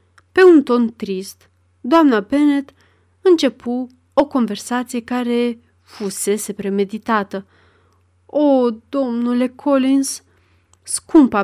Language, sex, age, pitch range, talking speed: Romanian, female, 30-49, 200-270 Hz, 85 wpm